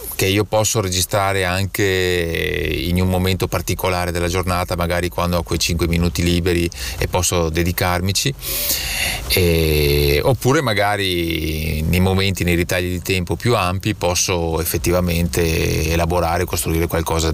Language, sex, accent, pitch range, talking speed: Italian, male, native, 85-100 Hz, 130 wpm